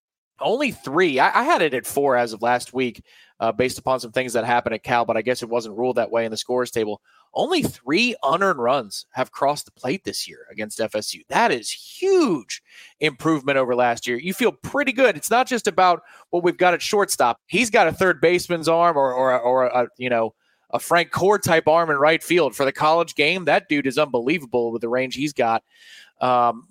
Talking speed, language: 220 wpm, English